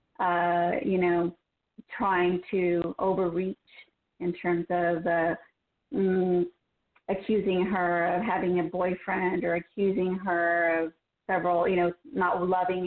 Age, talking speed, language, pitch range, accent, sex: 30-49, 120 wpm, English, 175-195 Hz, American, female